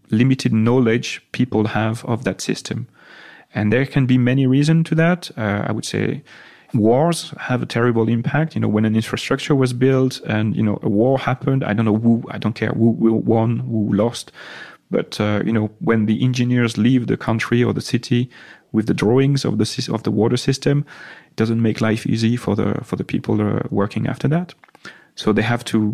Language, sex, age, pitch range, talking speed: English, male, 30-49, 110-130 Hz, 205 wpm